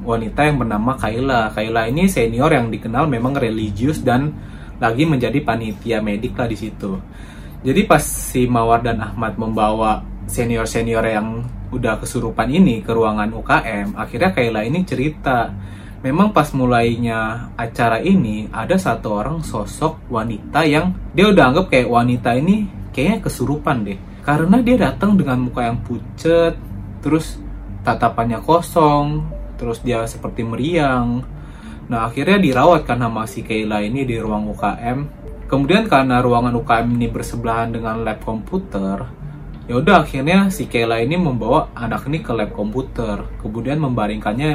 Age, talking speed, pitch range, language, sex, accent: 20-39, 140 wpm, 110-145 Hz, Indonesian, male, native